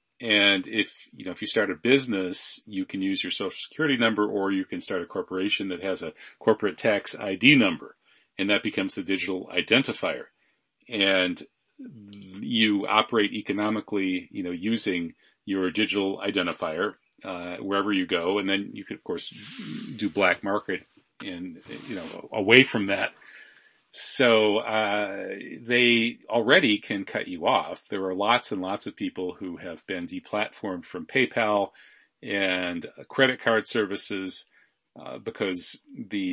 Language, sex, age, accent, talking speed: English, male, 40-59, American, 150 wpm